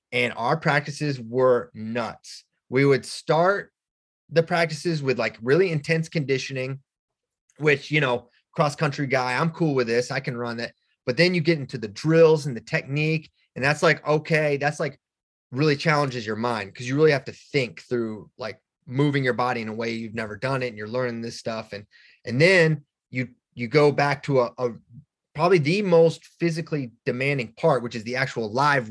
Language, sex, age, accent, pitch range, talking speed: English, male, 30-49, American, 125-165 Hz, 195 wpm